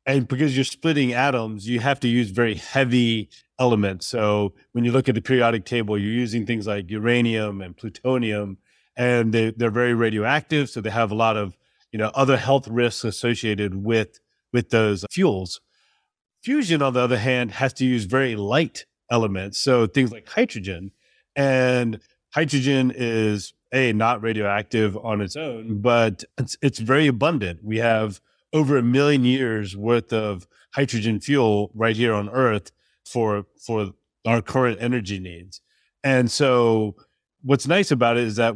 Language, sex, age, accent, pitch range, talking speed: English, male, 30-49, American, 110-130 Hz, 165 wpm